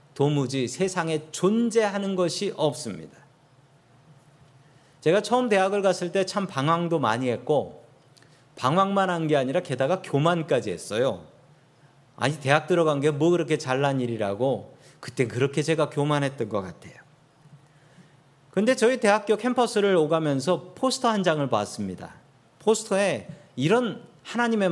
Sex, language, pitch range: male, Korean, 135-180 Hz